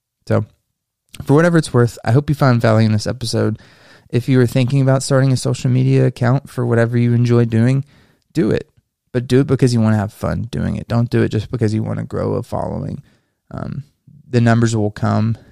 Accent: American